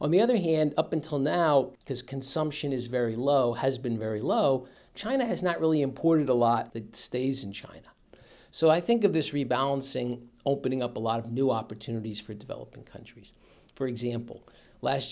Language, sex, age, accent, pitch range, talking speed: English, male, 50-69, American, 115-140 Hz, 185 wpm